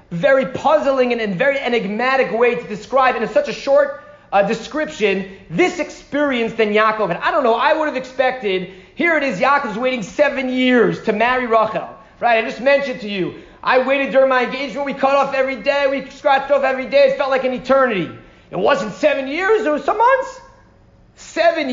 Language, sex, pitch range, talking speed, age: English, male, 245-320 Hz, 195 wpm, 30-49